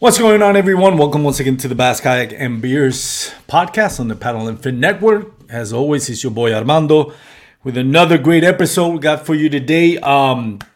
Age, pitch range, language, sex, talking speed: 30-49, 115-145 Hz, English, male, 195 wpm